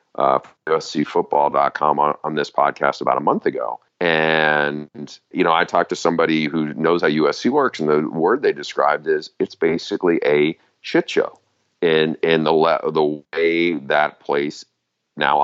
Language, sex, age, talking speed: English, male, 40-59, 165 wpm